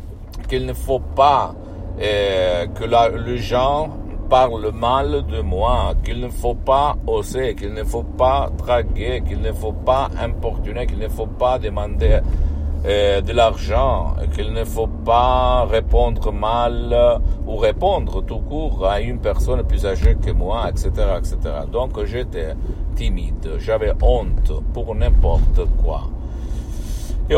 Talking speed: 140 wpm